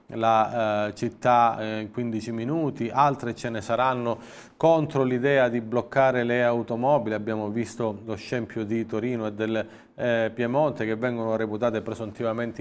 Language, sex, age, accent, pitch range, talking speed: Italian, male, 40-59, native, 110-120 Hz, 150 wpm